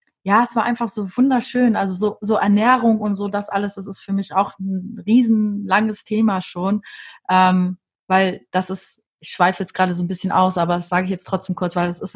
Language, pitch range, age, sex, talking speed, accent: German, 190-230 Hz, 30-49, female, 220 wpm, German